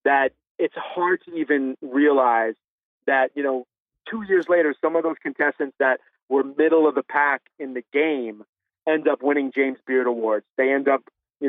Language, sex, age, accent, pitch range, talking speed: English, male, 30-49, American, 125-145 Hz, 185 wpm